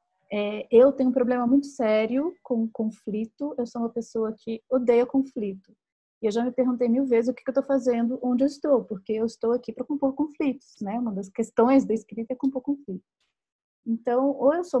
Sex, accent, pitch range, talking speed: female, Brazilian, 220-275 Hz, 210 wpm